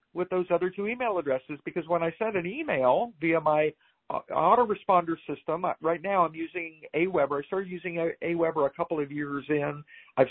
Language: English